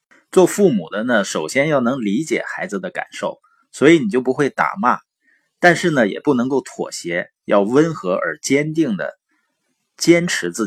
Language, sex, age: Chinese, male, 20-39